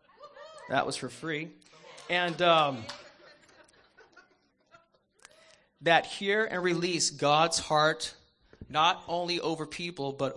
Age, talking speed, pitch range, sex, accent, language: 30-49, 100 wpm, 130-175 Hz, male, American, English